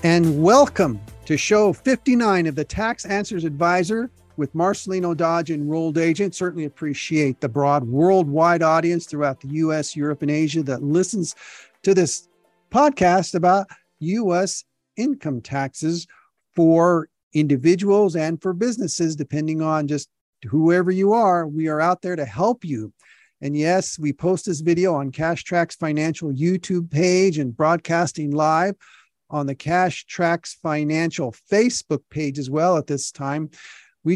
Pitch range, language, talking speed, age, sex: 150-180 Hz, English, 145 wpm, 50-69, male